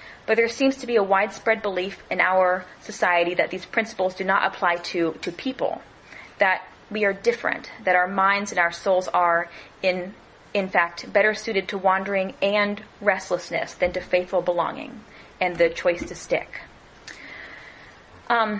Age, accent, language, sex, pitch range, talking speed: 30-49, American, English, female, 180-215 Hz, 160 wpm